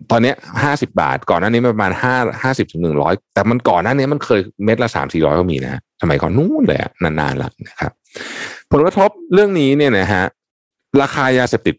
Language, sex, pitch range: Thai, male, 85-125 Hz